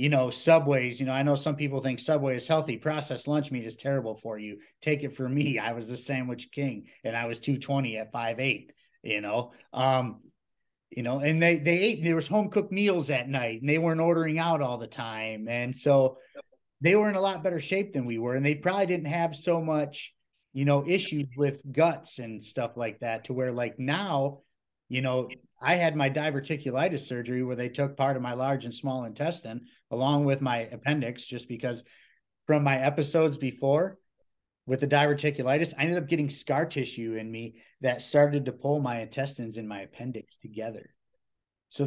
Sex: male